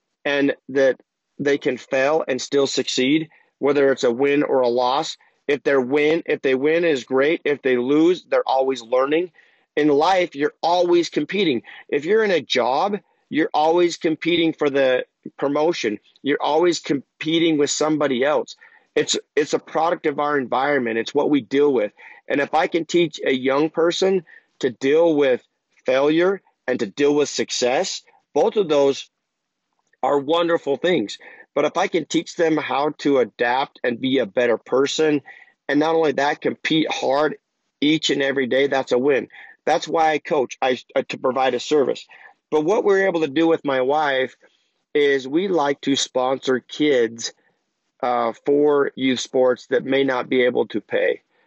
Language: English